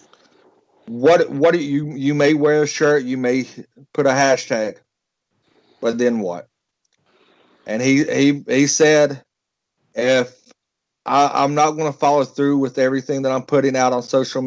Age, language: 50-69, English